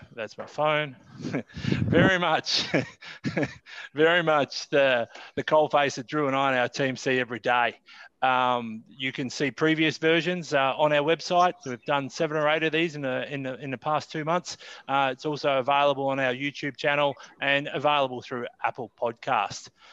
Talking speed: 180 wpm